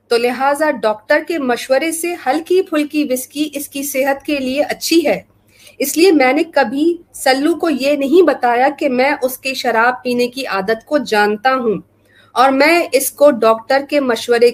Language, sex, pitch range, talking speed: Urdu, female, 240-290 Hz, 180 wpm